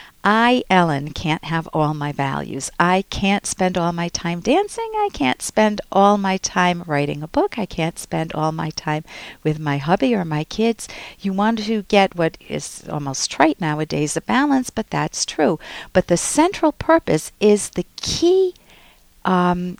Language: English